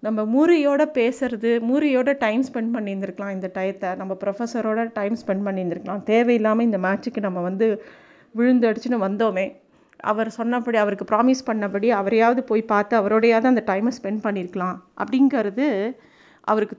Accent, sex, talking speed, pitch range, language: native, female, 130 wpm, 205-250 Hz, Tamil